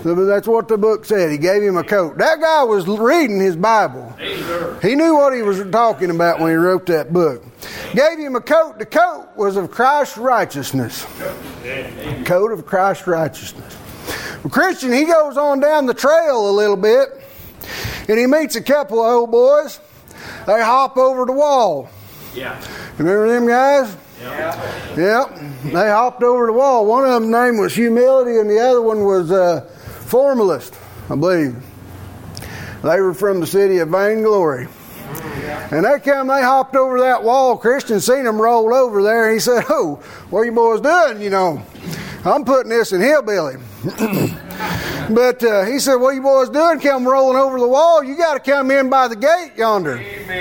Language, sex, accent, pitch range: English, male, American, 195-270 Hz